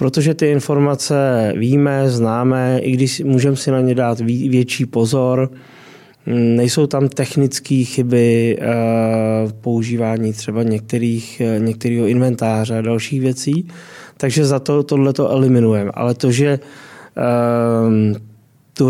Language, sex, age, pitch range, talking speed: Czech, male, 20-39, 115-130 Hz, 115 wpm